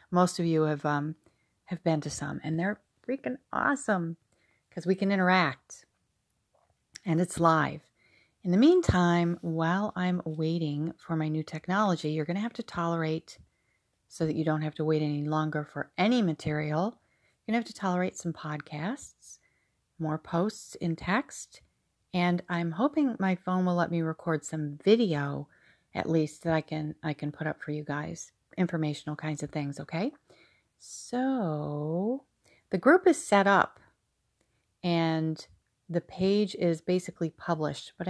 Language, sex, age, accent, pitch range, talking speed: English, female, 40-59, American, 155-185 Hz, 160 wpm